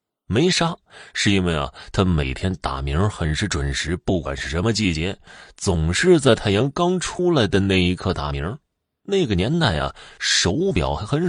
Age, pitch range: 20-39, 85-110 Hz